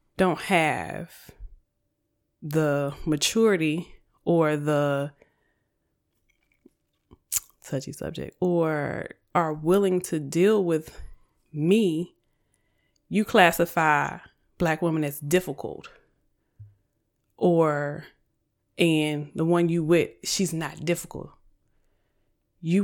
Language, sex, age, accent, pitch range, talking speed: English, female, 20-39, American, 160-210 Hz, 80 wpm